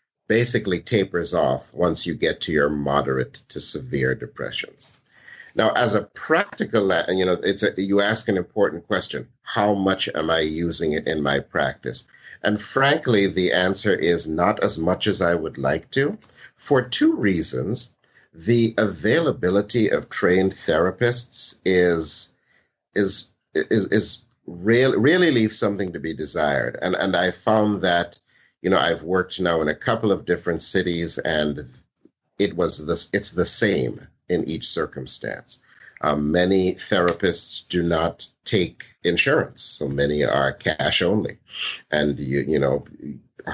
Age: 50-69